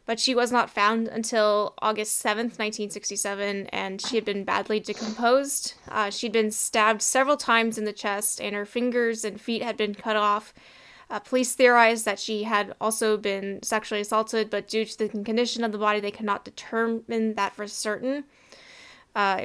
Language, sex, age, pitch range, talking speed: English, female, 10-29, 210-235 Hz, 180 wpm